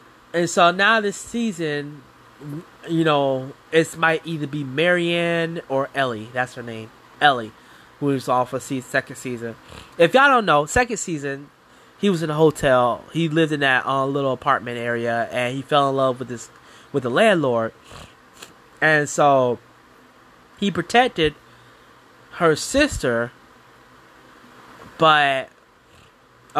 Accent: American